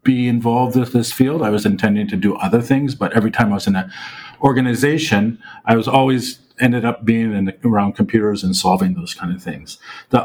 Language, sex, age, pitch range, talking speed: English, male, 40-59, 105-135 Hz, 215 wpm